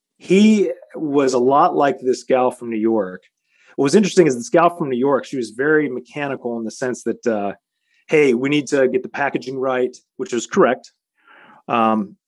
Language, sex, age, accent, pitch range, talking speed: English, male, 30-49, American, 115-145 Hz, 195 wpm